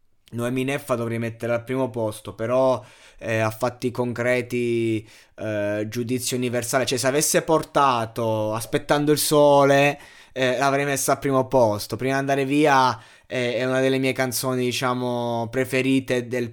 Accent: native